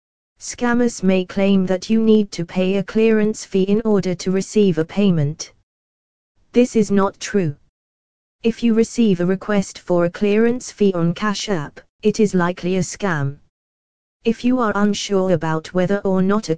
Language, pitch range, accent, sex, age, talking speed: English, 180-220 Hz, British, female, 20-39, 170 wpm